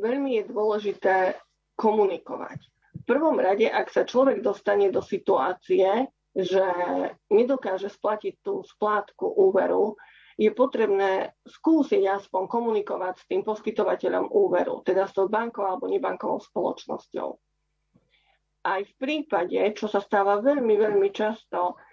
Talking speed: 120 wpm